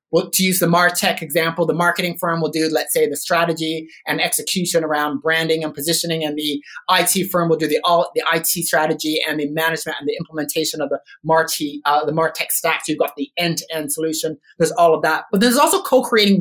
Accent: American